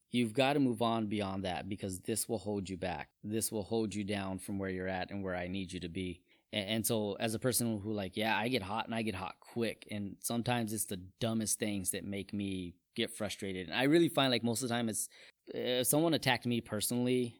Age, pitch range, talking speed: 20-39, 100-120 Hz, 240 wpm